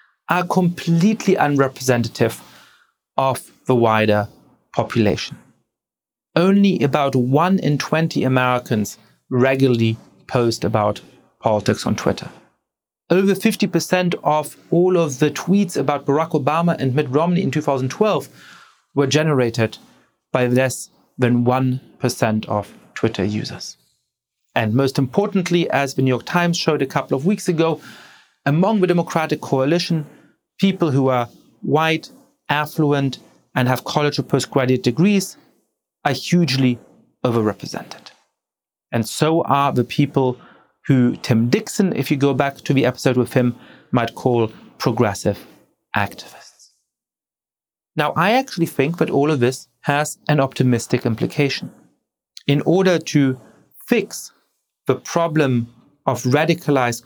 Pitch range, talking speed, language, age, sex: 125-165 Hz, 120 wpm, English, 40-59, male